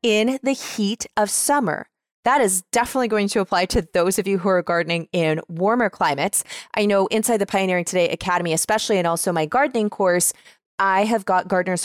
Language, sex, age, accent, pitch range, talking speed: English, female, 20-39, American, 175-220 Hz, 190 wpm